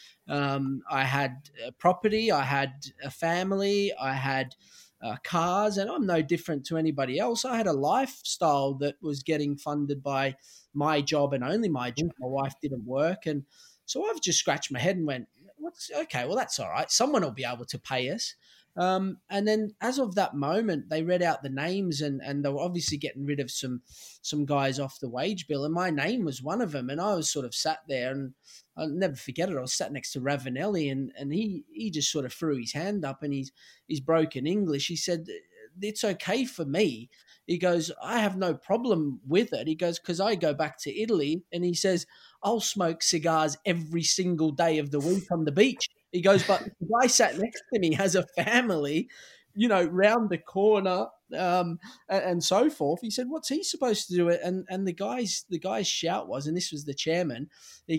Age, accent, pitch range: 20-39, Australian, 145-195 Hz